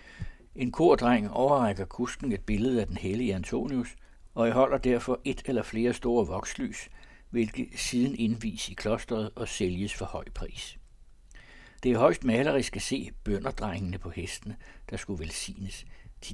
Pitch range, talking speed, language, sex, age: 100-125 Hz, 160 wpm, Danish, male, 60-79